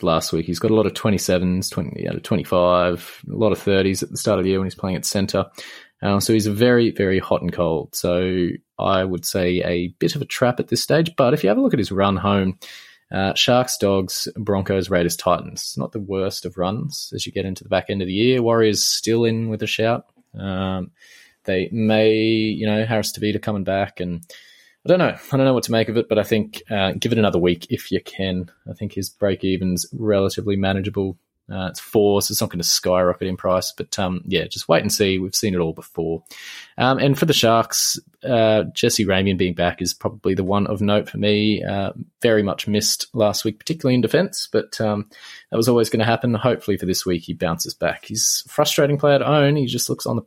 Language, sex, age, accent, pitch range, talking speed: English, male, 20-39, Australian, 95-110 Hz, 240 wpm